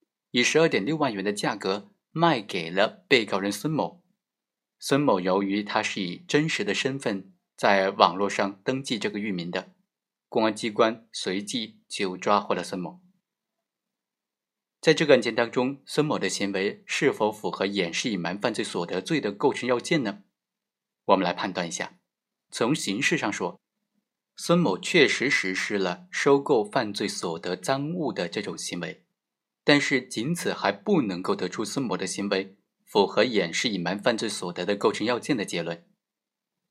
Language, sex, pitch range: Chinese, male, 95-160 Hz